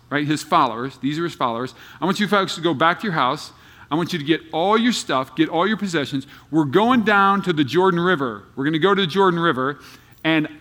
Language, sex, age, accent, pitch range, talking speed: English, male, 40-59, American, 145-215 Hz, 255 wpm